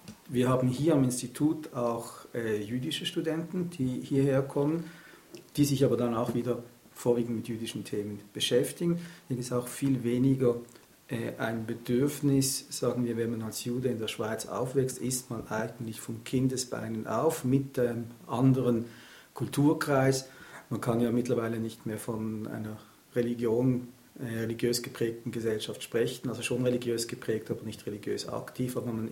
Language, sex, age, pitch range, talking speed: German, male, 50-69, 115-130 Hz, 150 wpm